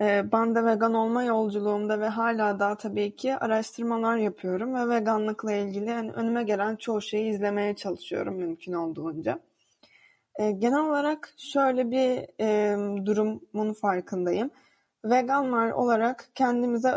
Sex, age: female, 20-39